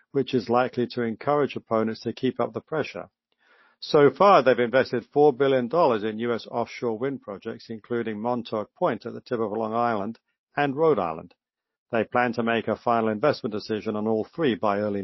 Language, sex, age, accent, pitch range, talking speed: English, male, 50-69, British, 115-135 Hz, 190 wpm